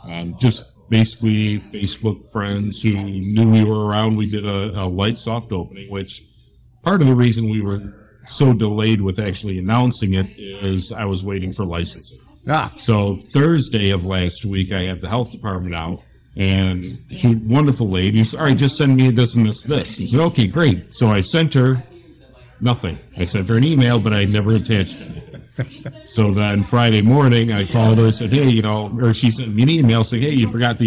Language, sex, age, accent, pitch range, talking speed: English, male, 60-79, American, 100-120 Hz, 205 wpm